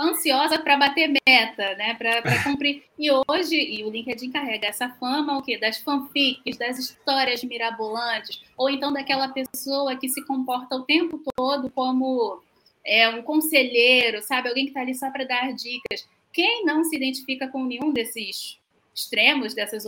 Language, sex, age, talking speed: Portuguese, female, 10-29, 165 wpm